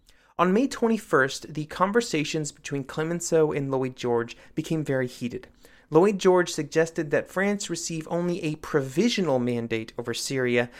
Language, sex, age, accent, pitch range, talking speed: English, male, 30-49, American, 135-180 Hz, 140 wpm